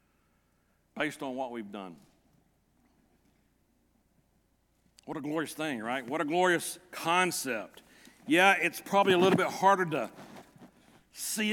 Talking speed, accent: 120 wpm, American